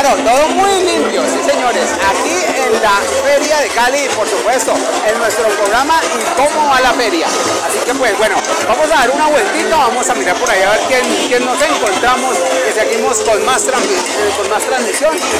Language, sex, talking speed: Spanish, male, 200 wpm